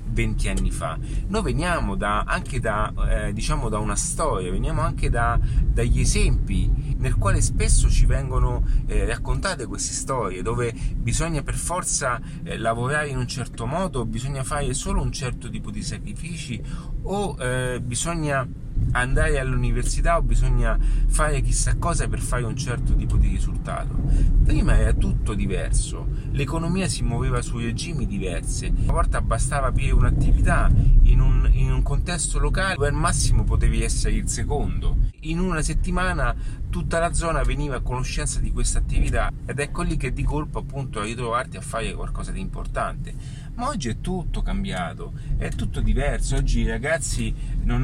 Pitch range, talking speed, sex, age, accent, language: 120-145 Hz, 160 wpm, male, 30-49, native, Italian